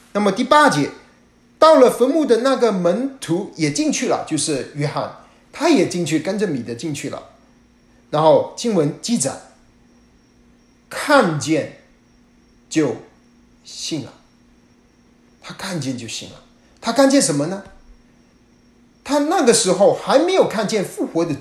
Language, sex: Chinese, male